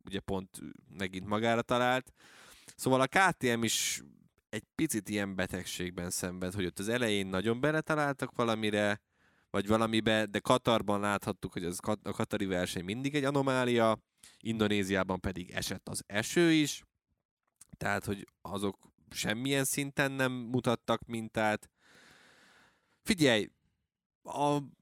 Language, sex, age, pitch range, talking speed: Hungarian, male, 20-39, 95-130 Hz, 125 wpm